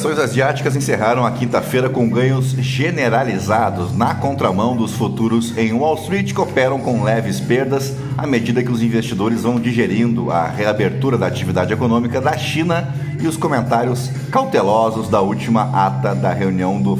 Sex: male